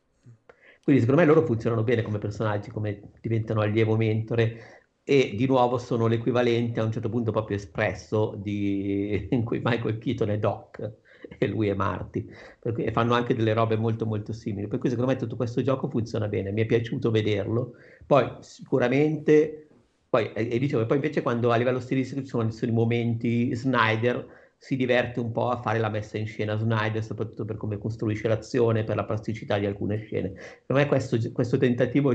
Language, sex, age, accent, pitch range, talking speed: Italian, male, 50-69, native, 105-120 Hz, 185 wpm